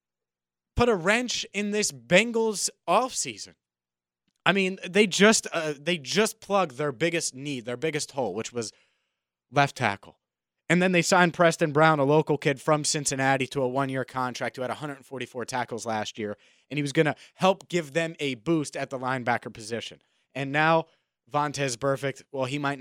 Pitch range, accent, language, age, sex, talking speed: 105-170 Hz, American, English, 30-49, male, 175 wpm